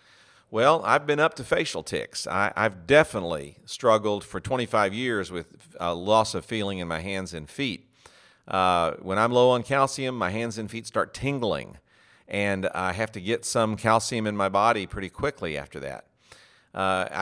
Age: 50-69